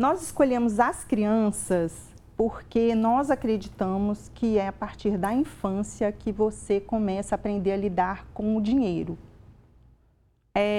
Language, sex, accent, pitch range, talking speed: Portuguese, female, Brazilian, 195-245 Hz, 135 wpm